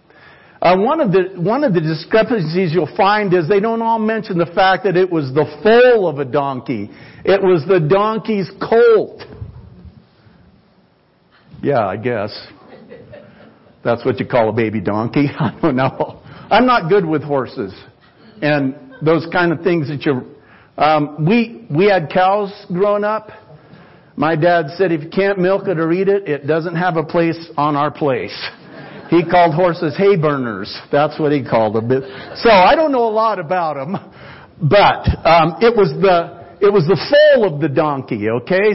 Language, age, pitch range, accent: English, 50-69, 155-200 Hz, American